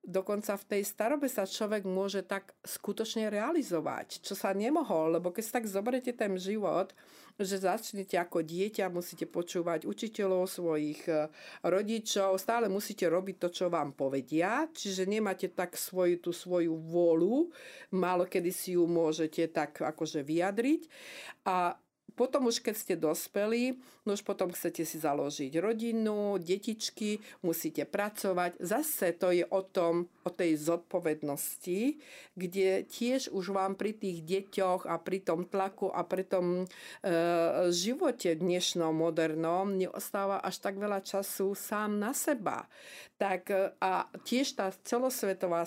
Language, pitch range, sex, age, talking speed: Slovak, 170-205 Hz, female, 50-69, 140 wpm